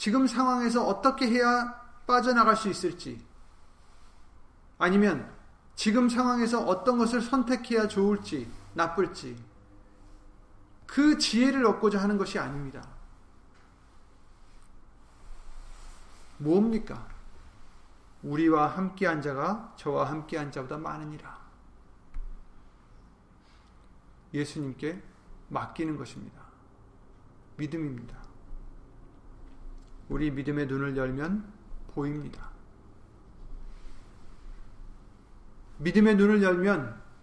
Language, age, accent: Korean, 40-59, native